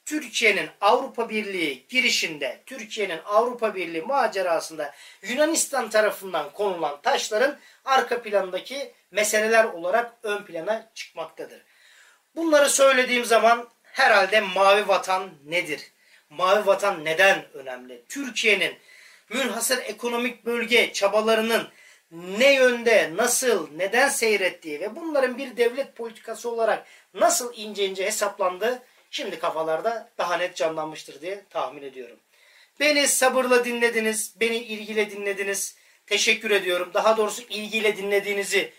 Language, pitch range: Turkish, 195-240 Hz